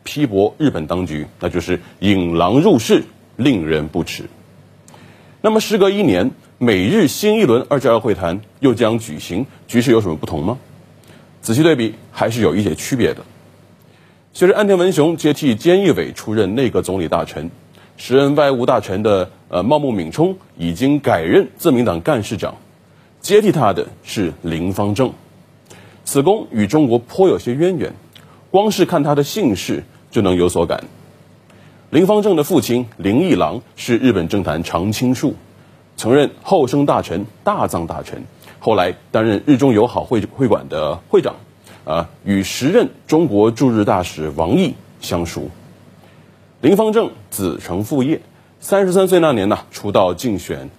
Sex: male